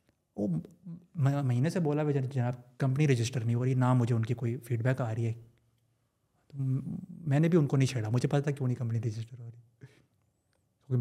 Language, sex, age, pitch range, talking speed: Urdu, male, 30-49, 125-170 Hz, 205 wpm